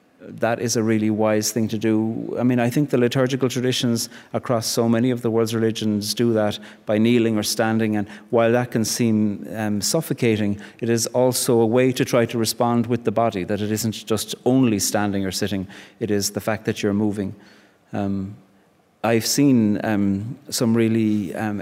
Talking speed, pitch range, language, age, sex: 190 wpm, 105-120 Hz, English, 30-49, male